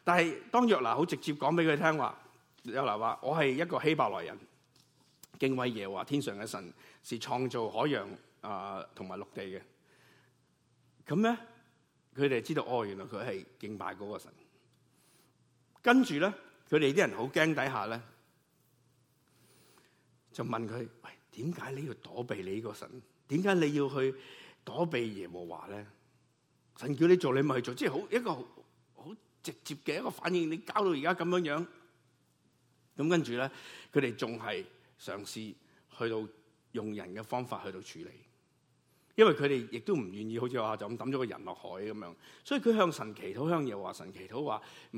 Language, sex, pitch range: Chinese, male, 115-160 Hz